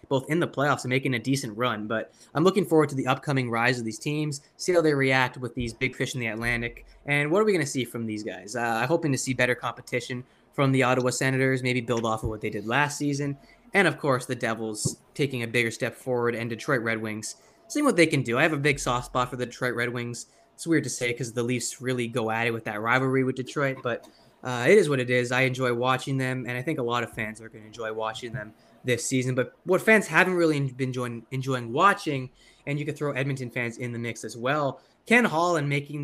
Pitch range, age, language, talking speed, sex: 120-145 Hz, 20-39, English, 260 wpm, male